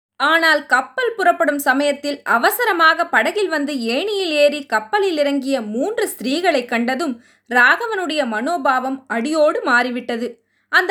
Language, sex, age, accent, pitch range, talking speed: Tamil, female, 20-39, native, 240-330 Hz, 105 wpm